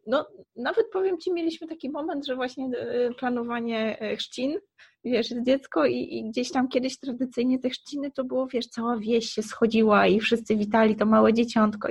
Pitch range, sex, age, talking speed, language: 220-265 Hz, female, 20-39, 170 wpm, Polish